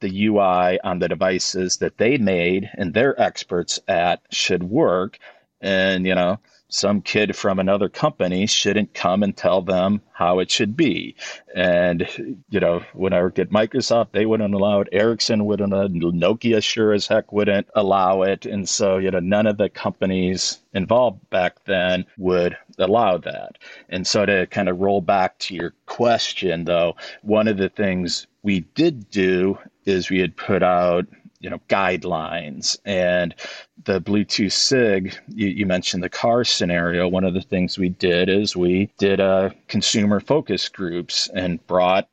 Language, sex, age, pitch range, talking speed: English, male, 40-59, 90-105 Hz, 170 wpm